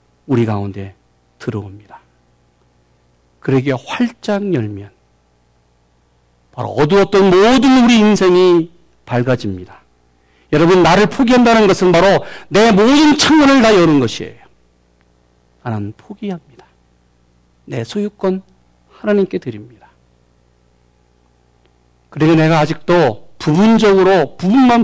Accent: native